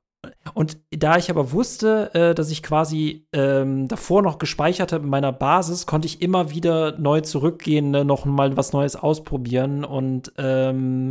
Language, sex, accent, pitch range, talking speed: German, male, German, 140-170 Hz, 165 wpm